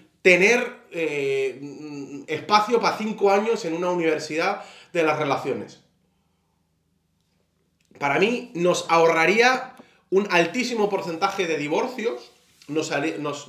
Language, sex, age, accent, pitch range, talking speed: Spanish, male, 30-49, Spanish, 165-215 Hz, 100 wpm